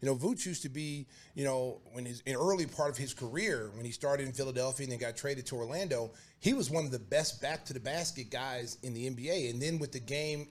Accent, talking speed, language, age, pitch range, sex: American, 245 wpm, English, 30-49, 130-165 Hz, male